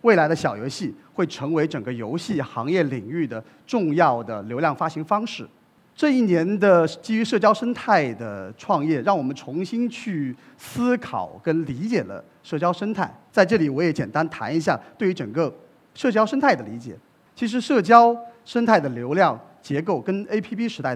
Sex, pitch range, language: male, 145-215 Hz, Chinese